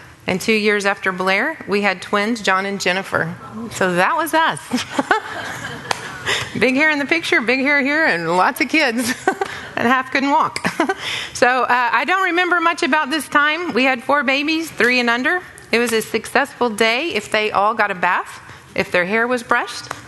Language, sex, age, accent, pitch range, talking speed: English, female, 30-49, American, 180-235 Hz, 190 wpm